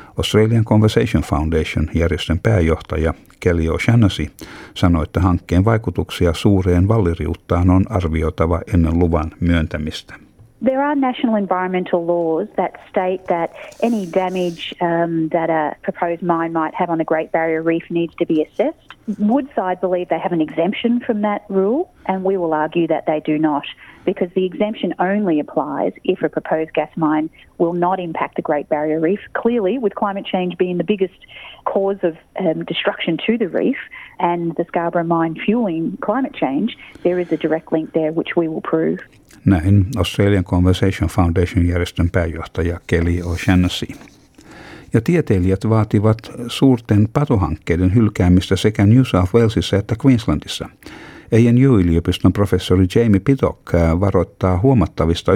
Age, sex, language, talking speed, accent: 40-59, female, Finnish, 145 wpm, Australian